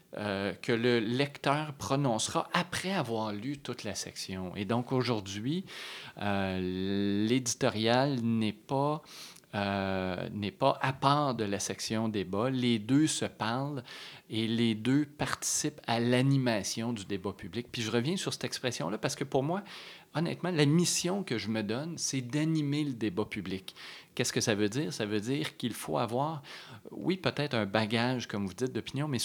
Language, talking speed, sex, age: French, 170 wpm, male, 30-49